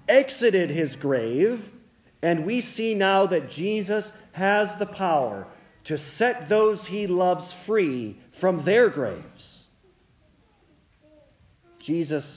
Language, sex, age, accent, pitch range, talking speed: English, male, 40-59, American, 140-195 Hz, 105 wpm